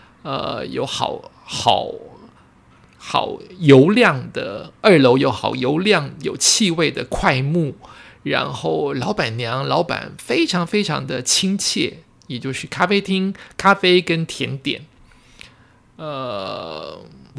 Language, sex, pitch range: Chinese, male, 125-175 Hz